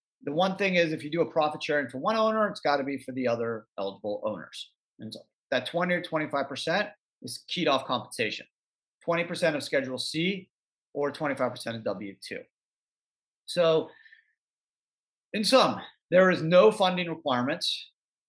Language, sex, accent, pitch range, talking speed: English, male, American, 120-165 Hz, 175 wpm